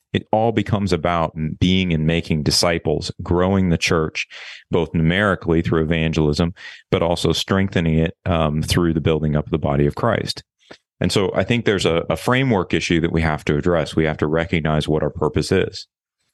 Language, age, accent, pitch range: English, 30-49, American, 80-95 Hz